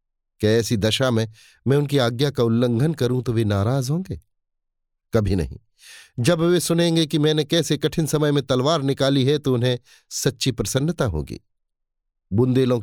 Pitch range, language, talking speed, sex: 115-150 Hz, Hindi, 155 wpm, male